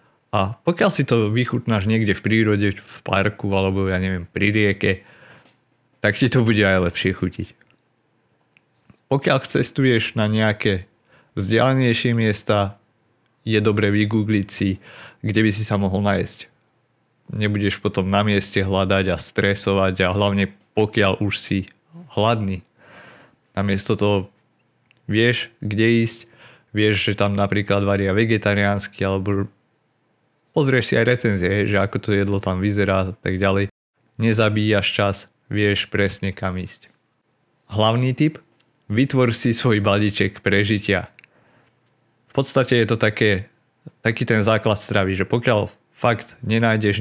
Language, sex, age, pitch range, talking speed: Slovak, male, 30-49, 100-120 Hz, 130 wpm